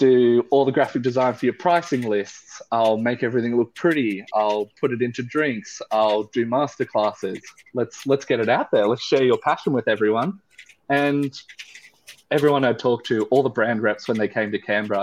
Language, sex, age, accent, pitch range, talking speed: English, male, 20-39, Australian, 110-145 Hz, 190 wpm